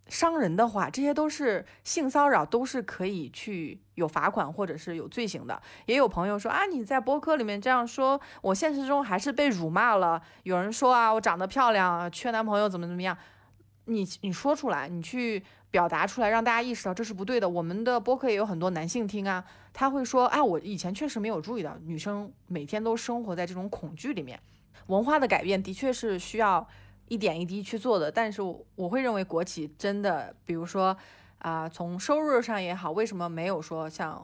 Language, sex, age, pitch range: Chinese, female, 20-39, 175-235 Hz